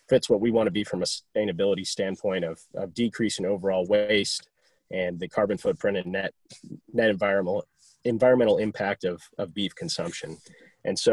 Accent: American